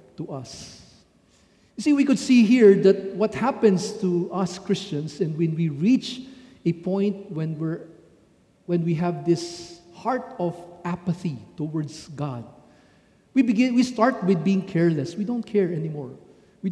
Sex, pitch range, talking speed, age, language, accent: male, 175-225 Hz, 155 wpm, 50-69, English, Filipino